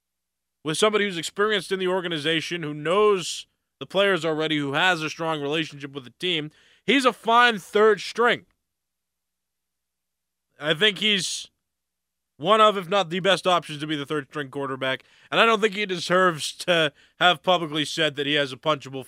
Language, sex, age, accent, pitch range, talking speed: English, male, 20-39, American, 140-175 Hz, 175 wpm